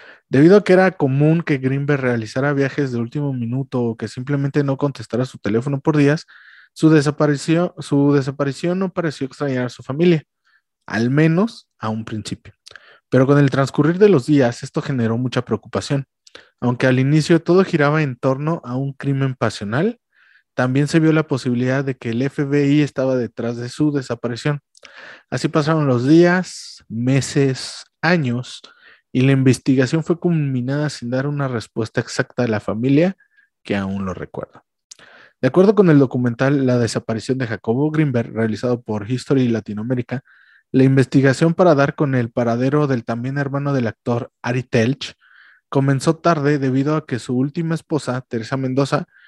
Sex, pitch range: male, 120-150 Hz